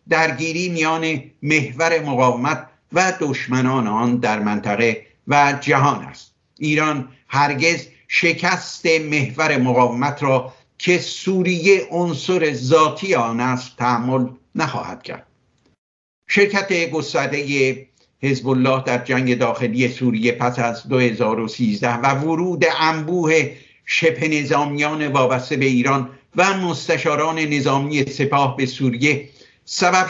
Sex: male